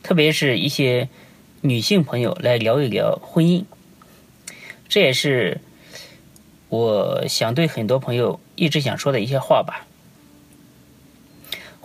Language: Chinese